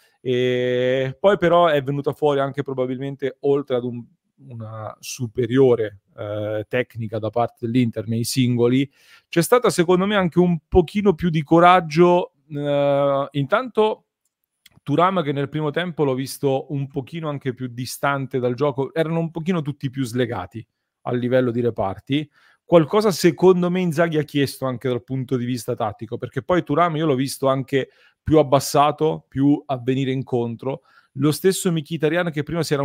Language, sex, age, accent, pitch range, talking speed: Italian, male, 40-59, native, 130-155 Hz, 165 wpm